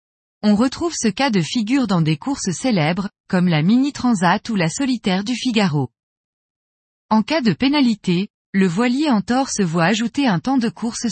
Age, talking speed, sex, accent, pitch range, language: 20-39, 185 wpm, female, French, 180-250 Hz, French